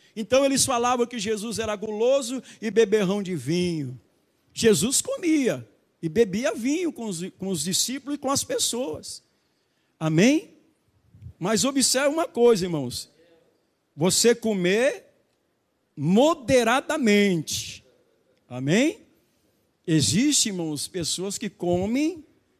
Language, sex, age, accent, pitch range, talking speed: Portuguese, male, 50-69, Brazilian, 180-245 Hz, 105 wpm